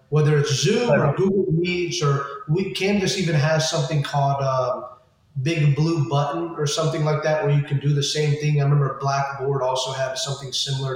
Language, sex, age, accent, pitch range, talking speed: English, male, 20-39, American, 135-160 Hz, 205 wpm